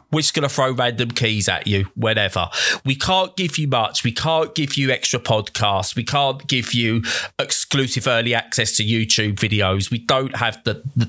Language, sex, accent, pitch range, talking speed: English, male, British, 105-135 Hz, 195 wpm